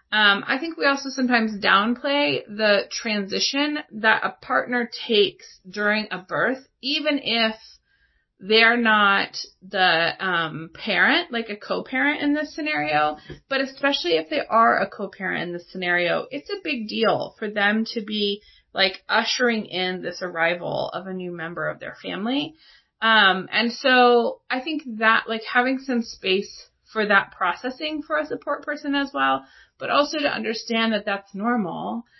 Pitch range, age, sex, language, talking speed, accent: 190-260 Hz, 30-49, female, English, 160 wpm, American